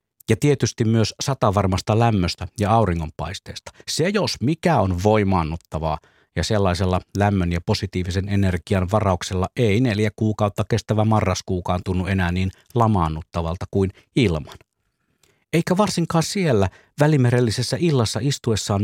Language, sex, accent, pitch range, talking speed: Finnish, male, native, 95-115 Hz, 115 wpm